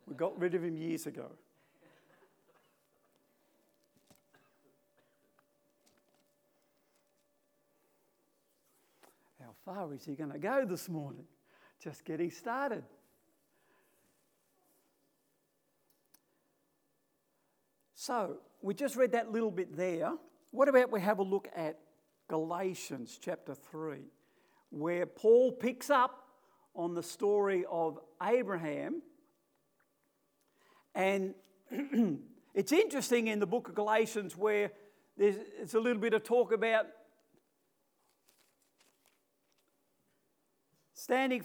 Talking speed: 95 wpm